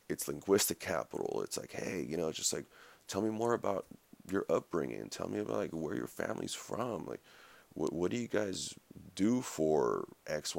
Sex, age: male, 30-49